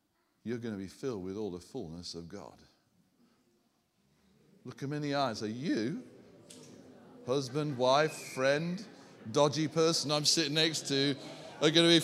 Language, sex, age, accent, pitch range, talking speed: English, male, 50-69, British, 115-185 Hz, 155 wpm